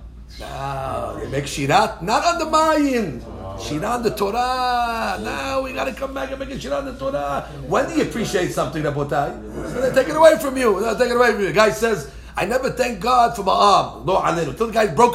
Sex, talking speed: male, 250 wpm